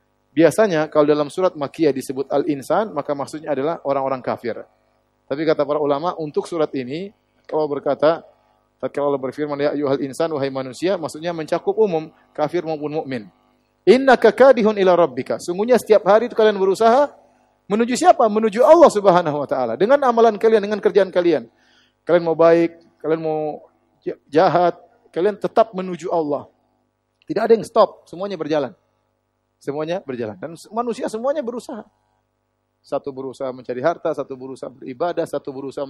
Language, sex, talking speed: Indonesian, male, 145 wpm